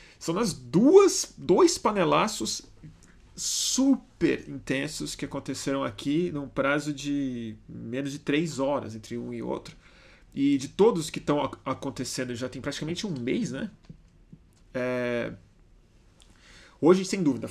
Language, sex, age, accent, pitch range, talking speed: Portuguese, male, 30-49, Brazilian, 125-155 Hz, 125 wpm